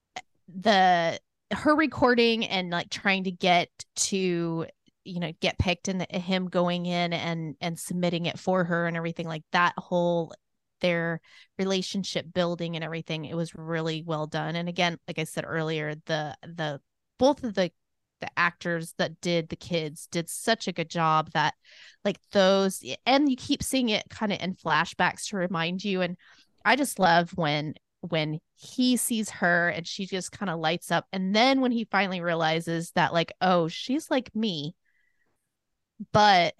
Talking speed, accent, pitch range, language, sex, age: 170 wpm, American, 165-200 Hz, English, female, 20-39